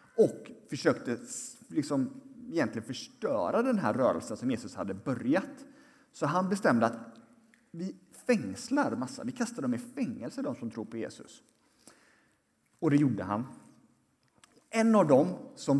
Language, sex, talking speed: Swedish, male, 140 wpm